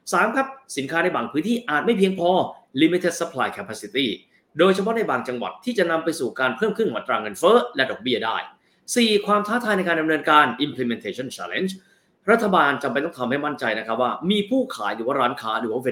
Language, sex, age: Thai, male, 20-39